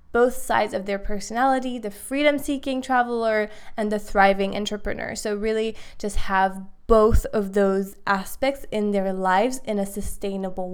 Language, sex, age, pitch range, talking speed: English, female, 20-39, 200-235 Hz, 145 wpm